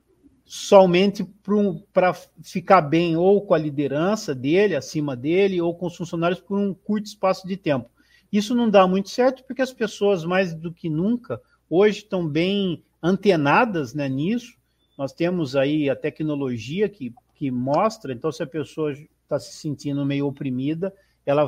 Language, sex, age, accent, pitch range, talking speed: Portuguese, male, 50-69, Brazilian, 150-200 Hz, 160 wpm